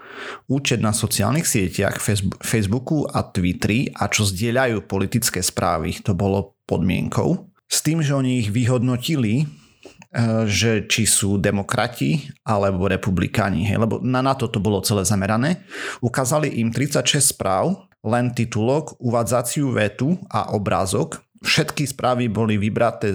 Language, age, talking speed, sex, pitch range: Slovak, 30-49, 125 wpm, male, 105-125 Hz